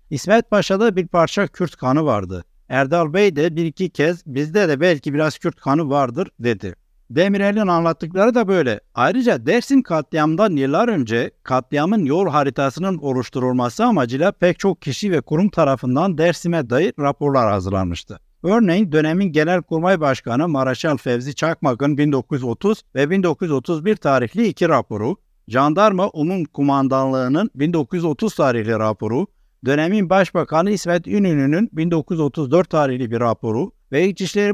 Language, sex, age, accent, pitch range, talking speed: Turkish, male, 60-79, native, 135-190 Hz, 130 wpm